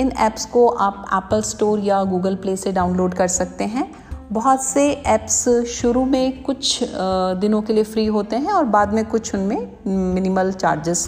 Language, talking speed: Hindi, 180 wpm